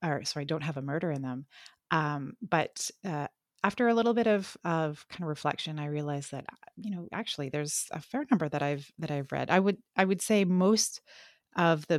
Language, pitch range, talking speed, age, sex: English, 140-180 Hz, 215 wpm, 30-49, female